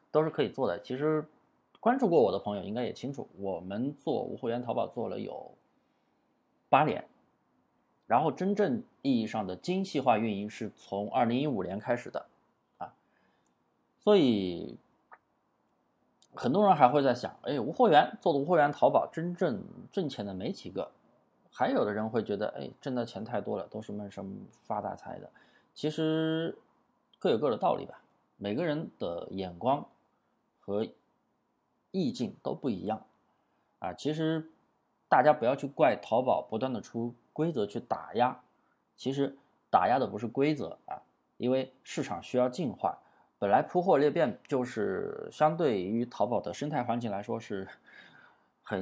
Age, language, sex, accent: 20-39, Chinese, male, native